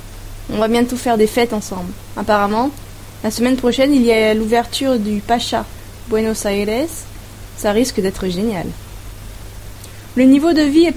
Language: French